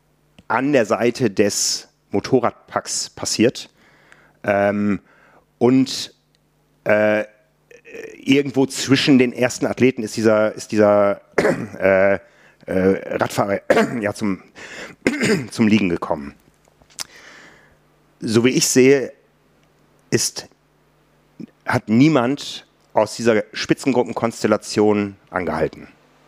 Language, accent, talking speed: German, German, 90 wpm